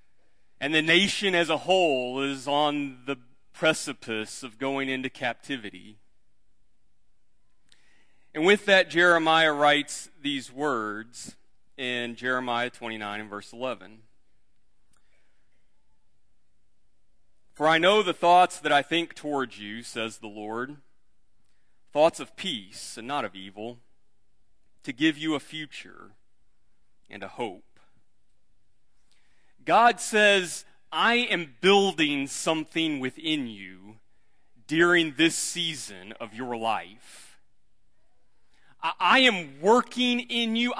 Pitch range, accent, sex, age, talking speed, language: 120-190 Hz, American, male, 40-59, 110 wpm, English